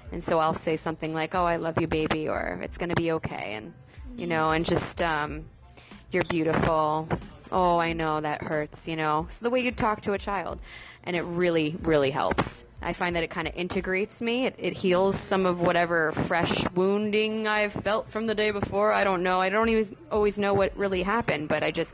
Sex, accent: female, American